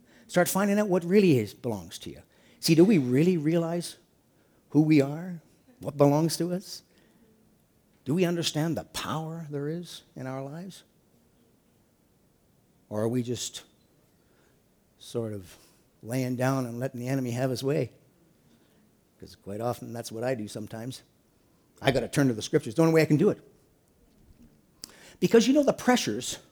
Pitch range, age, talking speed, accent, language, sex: 125-185 Hz, 50-69, 165 wpm, American, English, male